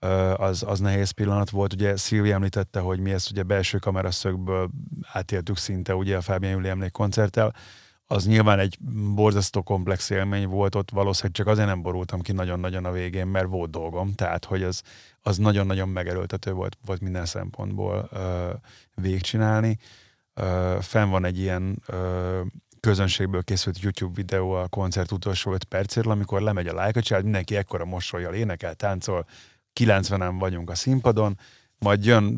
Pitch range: 95-110 Hz